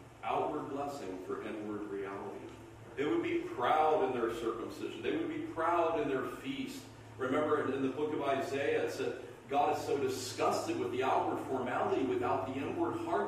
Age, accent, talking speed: 40-59, American, 180 wpm